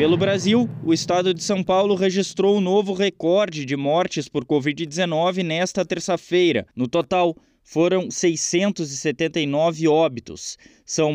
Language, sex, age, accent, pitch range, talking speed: Portuguese, male, 20-39, Brazilian, 150-185 Hz, 125 wpm